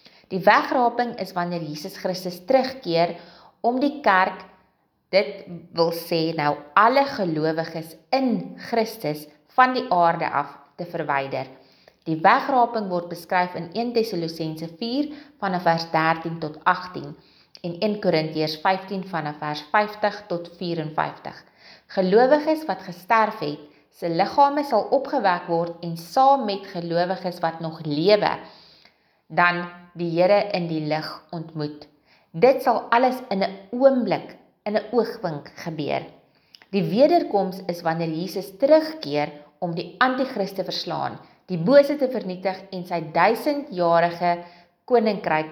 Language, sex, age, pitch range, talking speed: English, female, 30-49, 165-215 Hz, 130 wpm